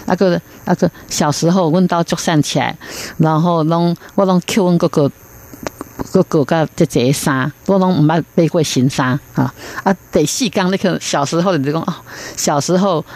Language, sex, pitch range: Chinese, female, 145-195 Hz